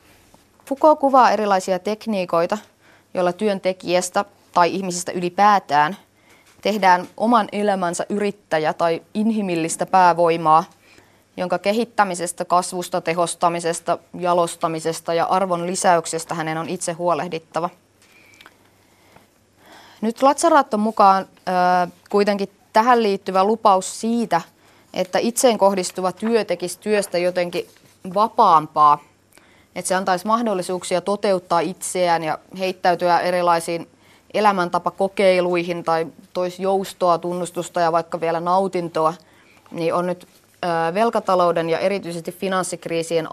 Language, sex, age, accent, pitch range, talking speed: Finnish, female, 20-39, native, 170-195 Hz, 100 wpm